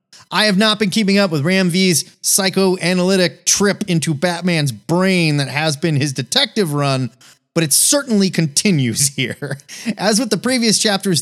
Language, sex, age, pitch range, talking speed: English, male, 30-49, 135-185 Hz, 160 wpm